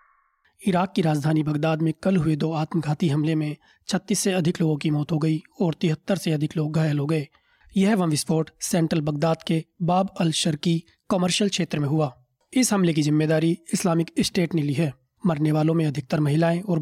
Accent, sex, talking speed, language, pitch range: native, male, 185 wpm, Hindi, 155-175 Hz